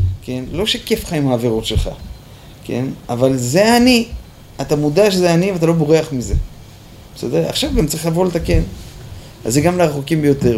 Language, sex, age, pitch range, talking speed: Hebrew, male, 30-49, 125-170 Hz, 170 wpm